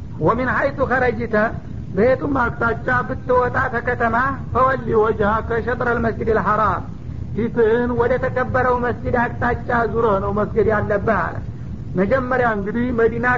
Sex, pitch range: male, 225-255 Hz